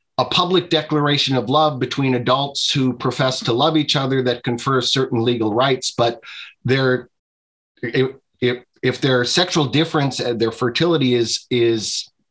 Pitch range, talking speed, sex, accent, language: 125-155 Hz, 150 wpm, male, American, English